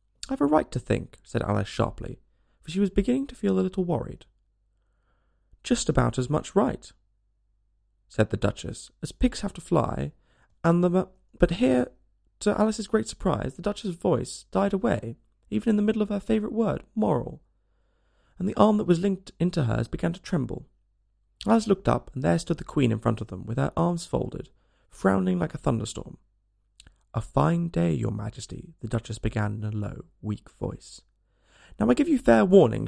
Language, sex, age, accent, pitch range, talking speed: English, male, 20-39, British, 105-175 Hz, 190 wpm